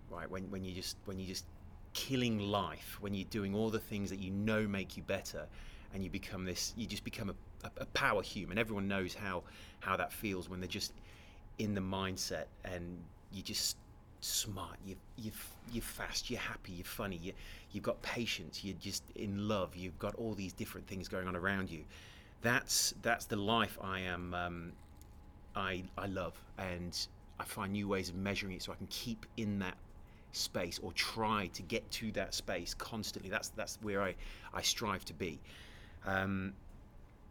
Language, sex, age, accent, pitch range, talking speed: English, male, 30-49, British, 95-105 Hz, 190 wpm